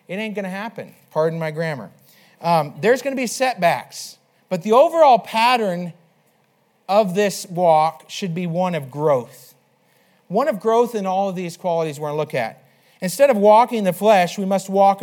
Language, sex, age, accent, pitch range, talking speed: English, male, 40-59, American, 155-200 Hz, 190 wpm